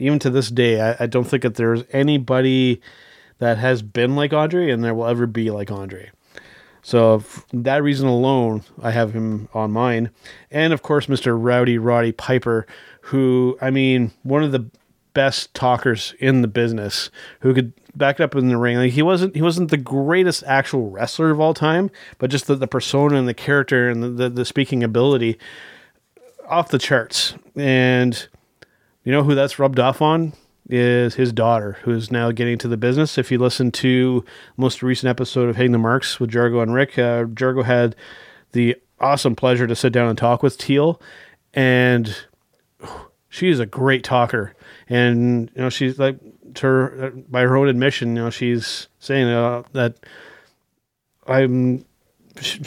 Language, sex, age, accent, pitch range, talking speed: English, male, 30-49, American, 120-135 Hz, 180 wpm